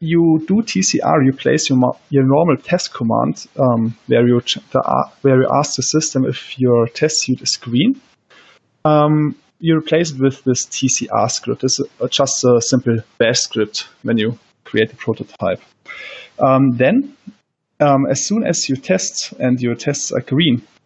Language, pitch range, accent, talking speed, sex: English, 130-155 Hz, German, 170 wpm, male